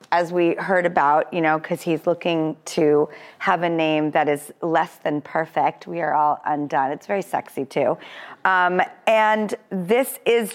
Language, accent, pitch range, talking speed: English, American, 160-200 Hz, 170 wpm